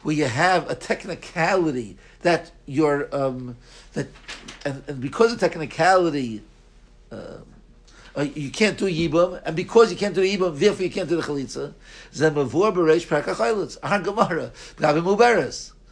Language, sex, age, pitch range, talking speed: English, male, 60-79, 145-185 Hz, 140 wpm